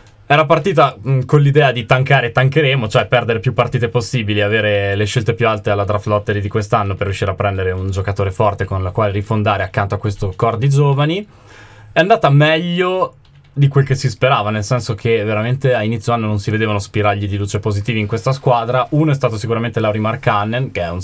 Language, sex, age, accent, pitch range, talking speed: Italian, male, 20-39, native, 100-125 Hz, 215 wpm